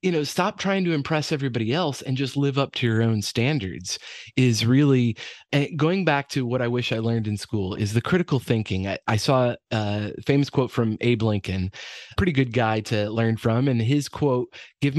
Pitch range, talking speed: 110-140 Hz, 210 wpm